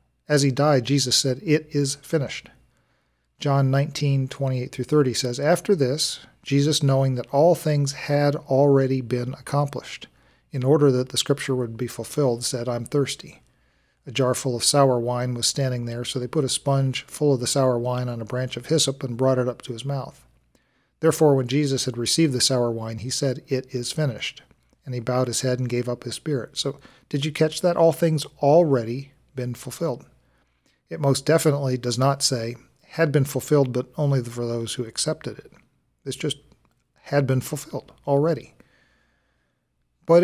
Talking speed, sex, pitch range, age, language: 185 wpm, male, 125-150 Hz, 40-59, English